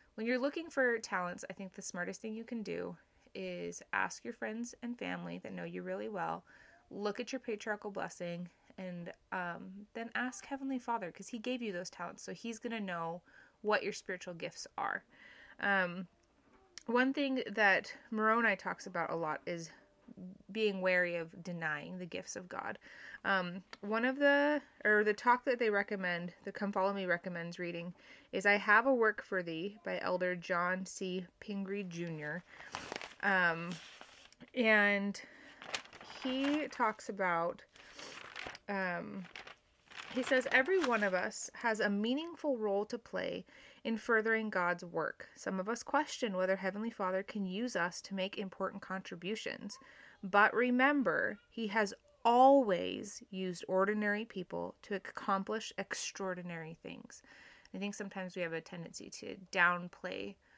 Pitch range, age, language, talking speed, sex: 180-230 Hz, 20-39, English, 155 wpm, female